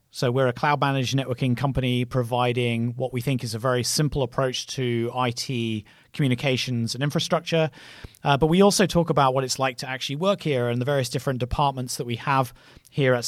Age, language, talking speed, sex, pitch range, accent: 30-49, English, 195 wpm, male, 125-160 Hz, British